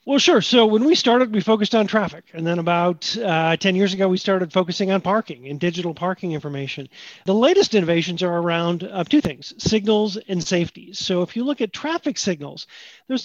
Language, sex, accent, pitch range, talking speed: English, male, American, 170-220 Hz, 205 wpm